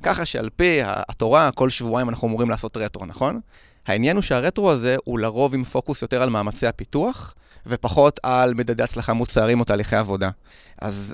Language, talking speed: Hebrew, 170 wpm